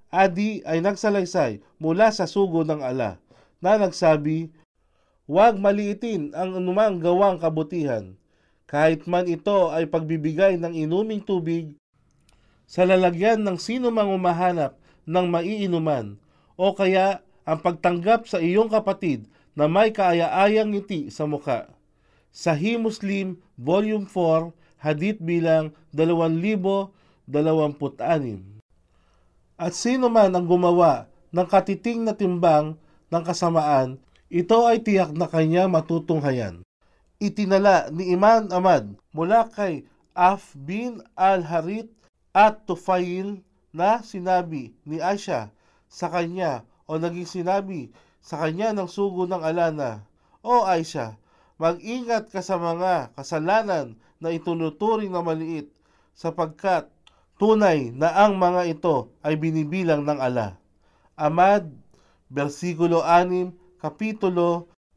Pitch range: 155-195 Hz